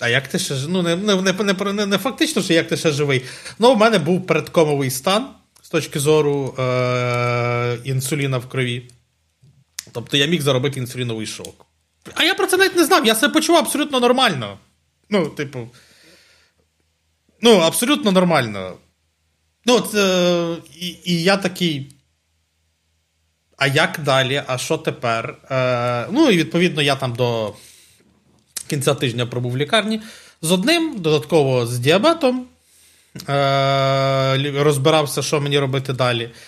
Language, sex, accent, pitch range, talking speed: Ukrainian, male, native, 110-180 Hz, 145 wpm